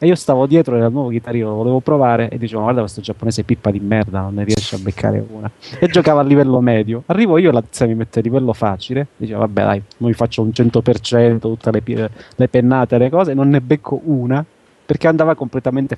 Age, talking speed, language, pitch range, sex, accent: 30-49, 240 wpm, Italian, 115-140 Hz, male, native